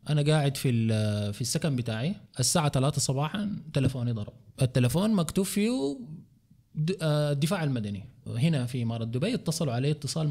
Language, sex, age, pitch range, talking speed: Arabic, male, 20-39, 140-210 Hz, 135 wpm